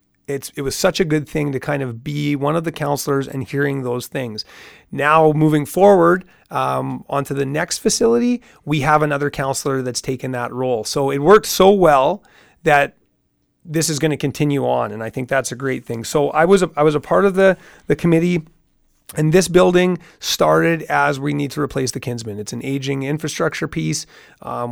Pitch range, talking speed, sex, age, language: 130-155 Hz, 200 wpm, male, 30-49, English